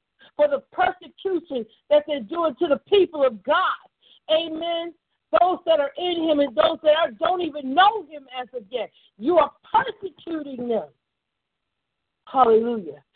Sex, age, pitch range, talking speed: female, 50-69, 230-330 Hz, 145 wpm